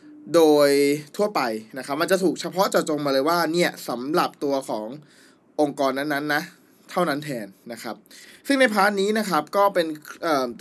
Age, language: 20-39, Thai